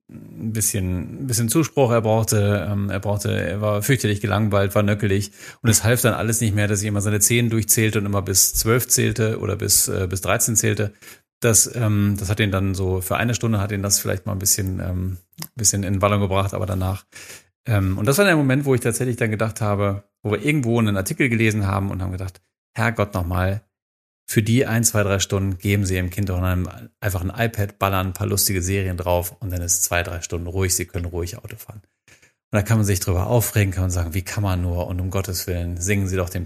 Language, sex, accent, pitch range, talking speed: German, male, German, 95-110 Hz, 235 wpm